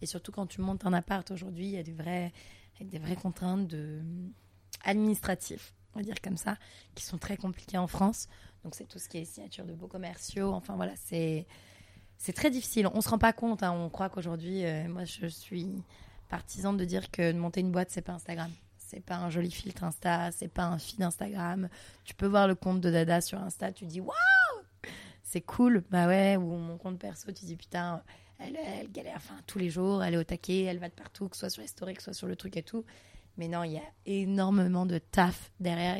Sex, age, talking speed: female, 20-39, 235 wpm